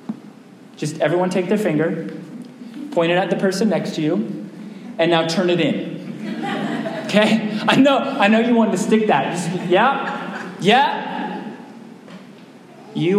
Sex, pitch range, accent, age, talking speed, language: male, 180-245 Hz, American, 30-49, 140 wpm, English